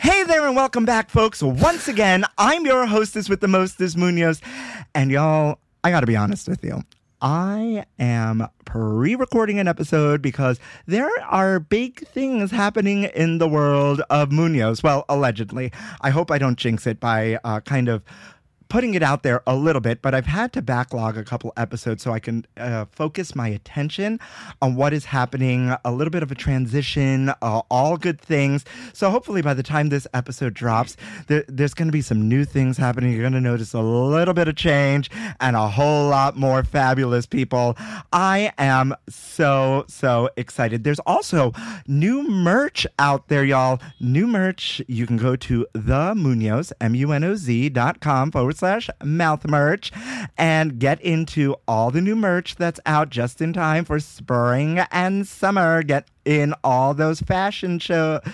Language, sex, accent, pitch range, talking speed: English, male, American, 125-175 Hz, 175 wpm